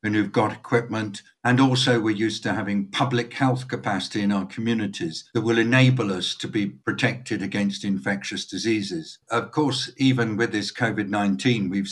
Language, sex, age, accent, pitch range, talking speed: English, male, 60-79, British, 100-120 Hz, 170 wpm